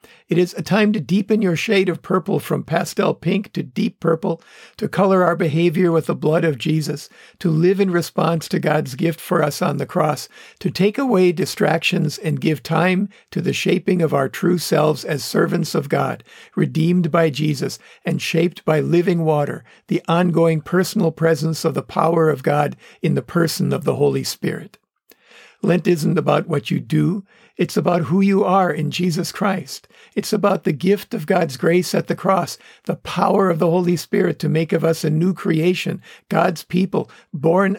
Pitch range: 160-190 Hz